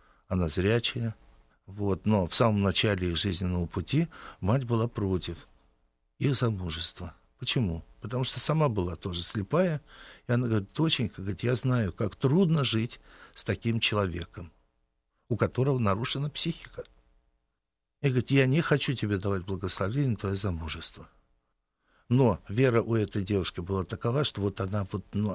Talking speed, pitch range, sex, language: 140 wpm, 85-115 Hz, male, Russian